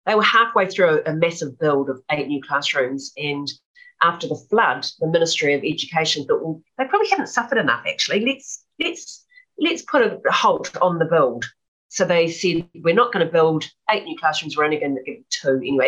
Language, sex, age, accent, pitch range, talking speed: English, female, 40-59, Australian, 140-180 Hz, 205 wpm